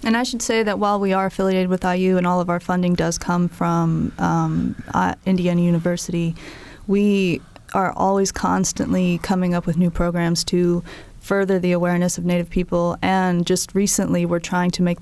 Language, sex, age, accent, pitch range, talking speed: English, female, 20-39, American, 170-185 Hz, 180 wpm